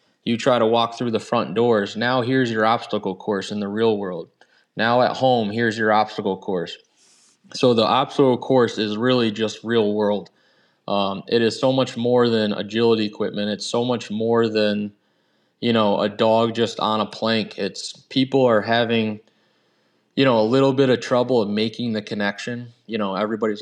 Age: 20-39